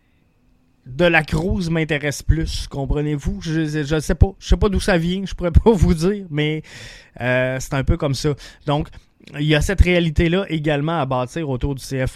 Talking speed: 200 wpm